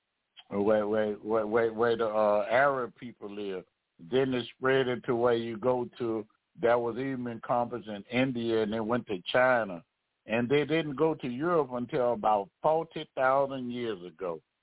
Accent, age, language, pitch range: American, 60-79, English, 110-130 Hz